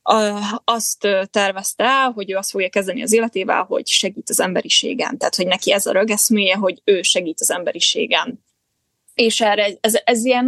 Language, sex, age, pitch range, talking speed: Hungarian, female, 20-39, 195-230 Hz, 165 wpm